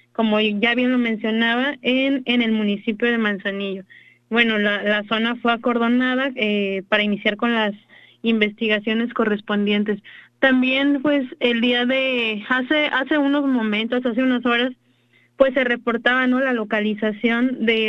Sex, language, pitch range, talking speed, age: female, Spanish, 215-255 Hz, 145 wpm, 20-39